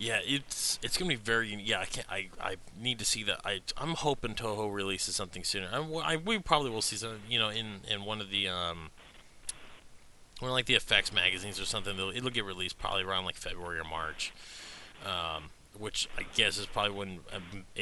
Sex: male